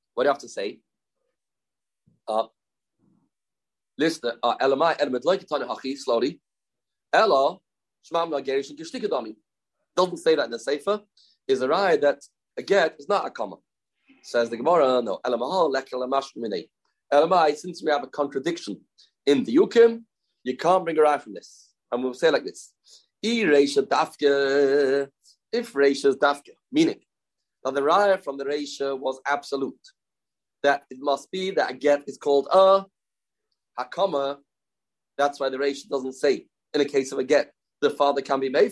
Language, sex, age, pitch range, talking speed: English, male, 40-59, 140-195 Hz, 160 wpm